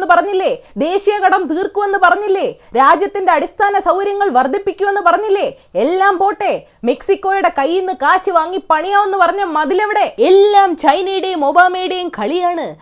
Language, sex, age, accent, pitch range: Malayalam, female, 20-39, native, 280-390 Hz